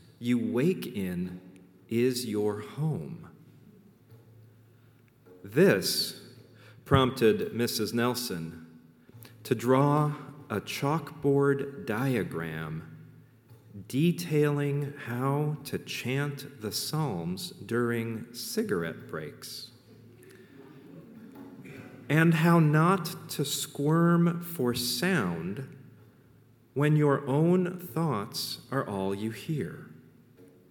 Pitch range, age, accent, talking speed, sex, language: 115-150 Hz, 40-59, American, 75 wpm, male, English